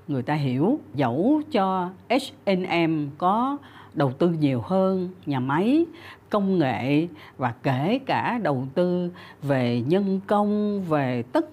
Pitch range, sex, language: 145-225 Hz, female, Vietnamese